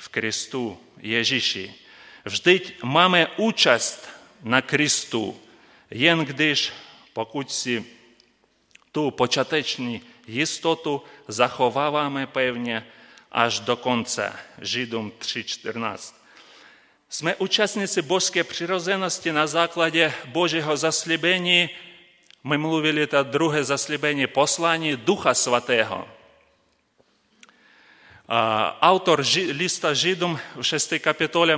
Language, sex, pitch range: Czech, male, 135-170 Hz